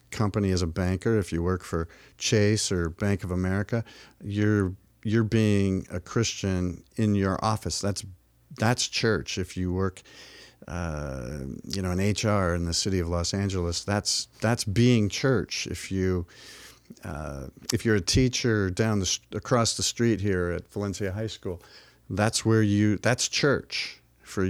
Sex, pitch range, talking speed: male, 90-105 Hz, 160 wpm